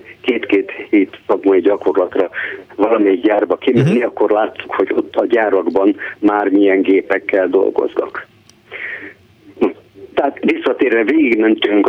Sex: male